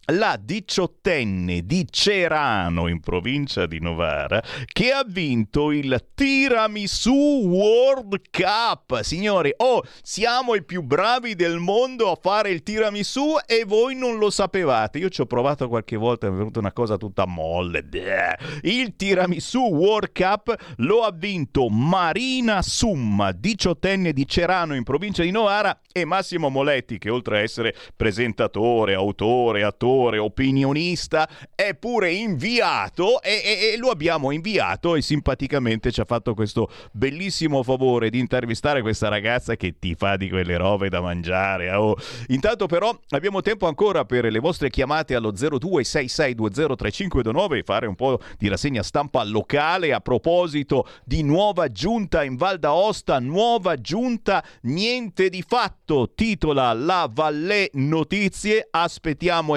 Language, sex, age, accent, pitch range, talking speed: Italian, male, 40-59, native, 115-195 Hz, 140 wpm